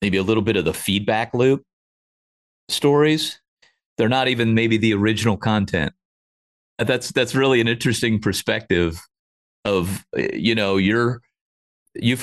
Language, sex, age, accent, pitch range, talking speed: English, male, 40-59, American, 100-130 Hz, 135 wpm